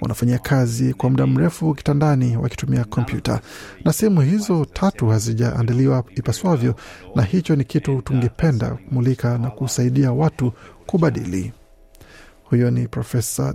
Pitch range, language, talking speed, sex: 120-140 Hz, Swahili, 120 wpm, male